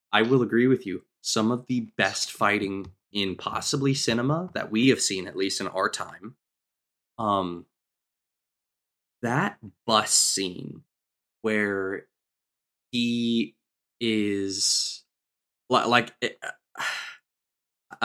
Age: 20-39